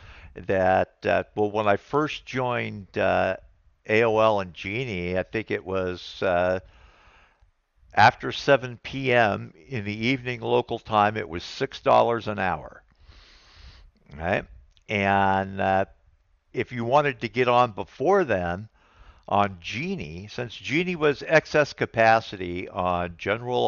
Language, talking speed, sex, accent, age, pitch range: English, 125 wpm, male, American, 60-79, 90-120 Hz